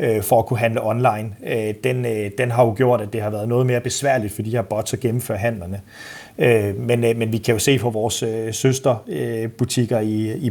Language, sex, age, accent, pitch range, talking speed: Danish, male, 30-49, native, 115-135 Hz, 200 wpm